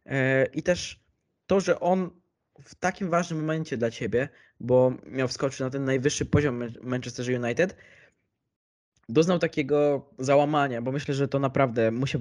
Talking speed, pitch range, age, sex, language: 145 wpm, 130-170 Hz, 20-39, male, Polish